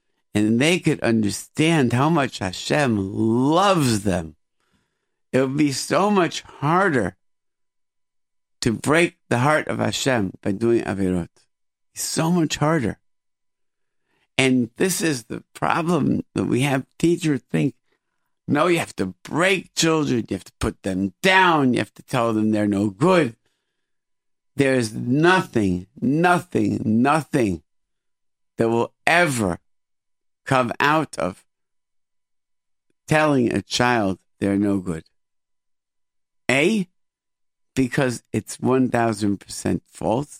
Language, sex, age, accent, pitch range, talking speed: English, male, 50-69, American, 100-140 Hz, 115 wpm